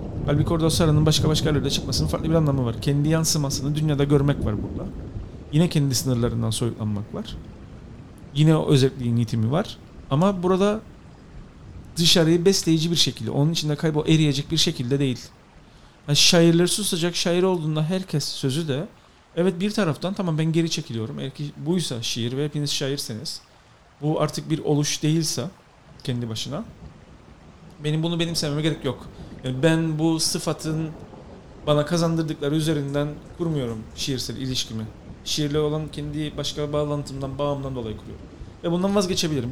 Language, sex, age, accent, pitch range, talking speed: English, male, 40-59, Turkish, 135-170 Hz, 140 wpm